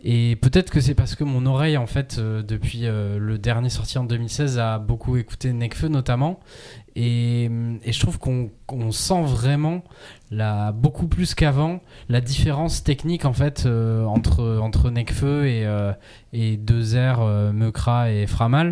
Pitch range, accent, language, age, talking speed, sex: 115-140 Hz, French, French, 20-39, 165 wpm, male